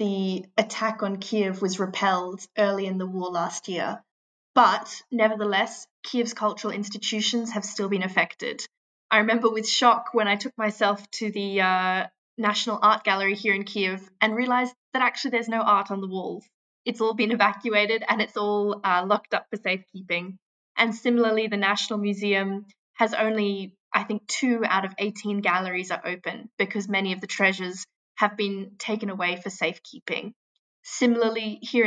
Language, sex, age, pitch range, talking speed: English, female, 20-39, 195-225 Hz, 170 wpm